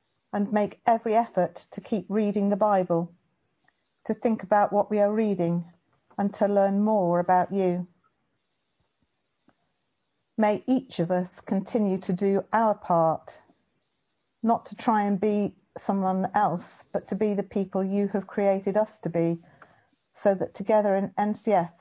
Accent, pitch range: British, 180-210 Hz